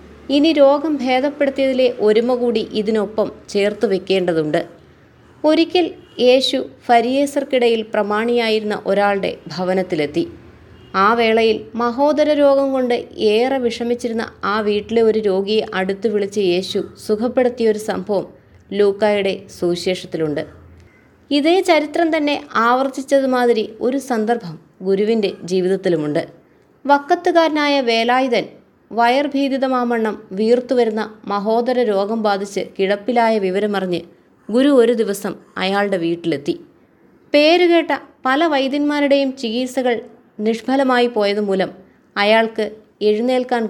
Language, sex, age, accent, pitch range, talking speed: Malayalam, female, 20-39, native, 200-260 Hz, 85 wpm